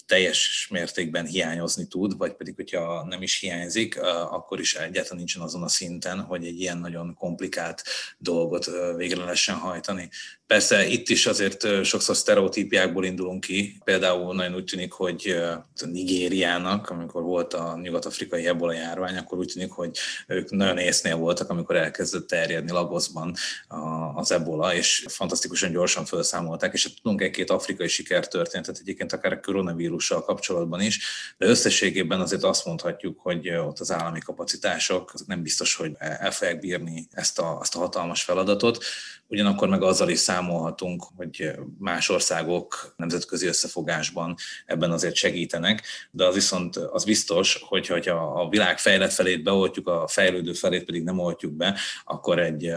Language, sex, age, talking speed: Hungarian, male, 30-49, 150 wpm